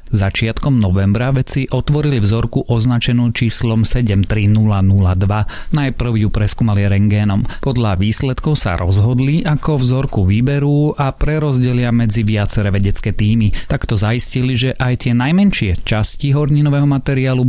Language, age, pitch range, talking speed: Slovak, 30-49, 105-130 Hz, 115 wpm